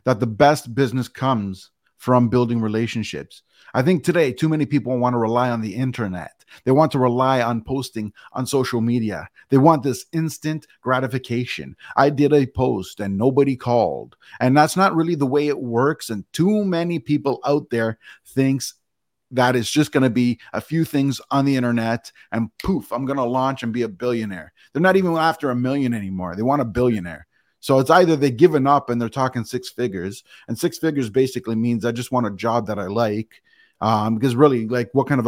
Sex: male